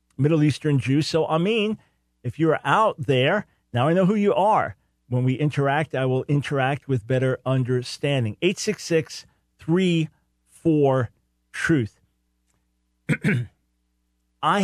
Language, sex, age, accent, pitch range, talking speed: English, male, 50-69, American, 115-145 Hz, 105 wpm